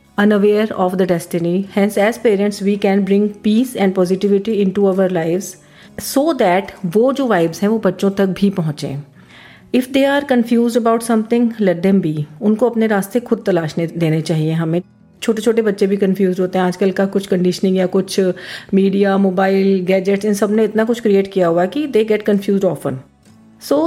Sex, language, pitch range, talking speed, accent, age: female, Hindi, 180-215 Hz, 190 wpm, native, 40-59